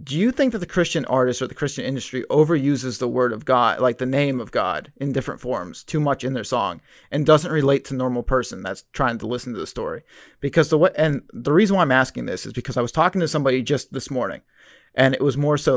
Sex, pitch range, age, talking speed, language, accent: male, 130-155 Hz, 30-49, 255 wpm, English, American